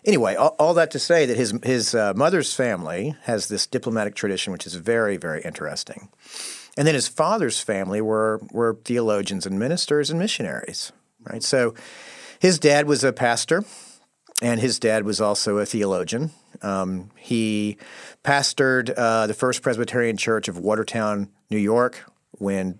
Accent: American